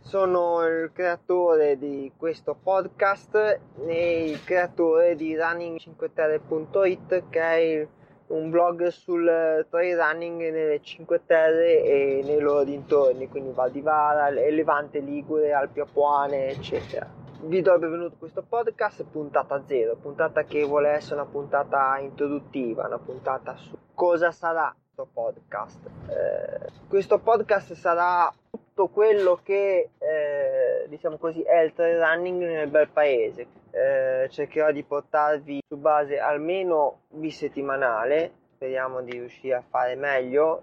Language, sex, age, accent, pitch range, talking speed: Italian, male, 20-39, native, 145-175 Hz, 125 wpm